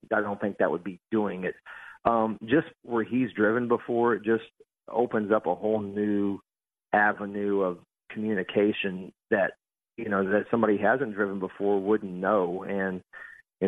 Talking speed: 160 wpm